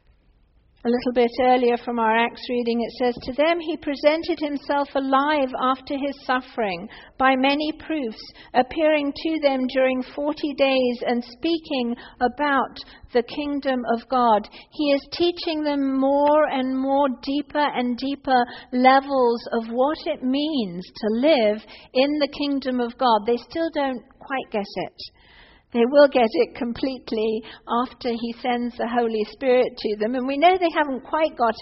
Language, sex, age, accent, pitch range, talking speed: English, female, 50-69, British, 240-305 Hz, 160 wpm